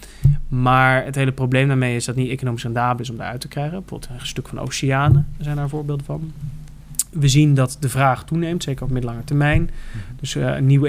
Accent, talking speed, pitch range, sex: Dutch, 220 wpm, 125-145 Hz, male